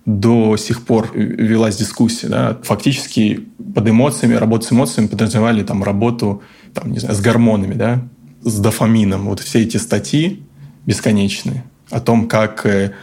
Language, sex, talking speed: Russian, male, 145 wpm